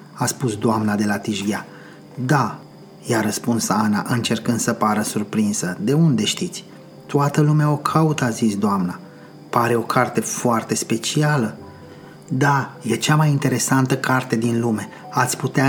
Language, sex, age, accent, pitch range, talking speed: Romanian, male, 30-49, native, 115-140 Hz, 150 wpm